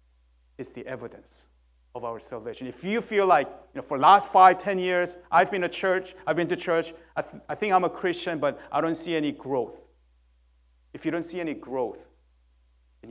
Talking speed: 210 wpm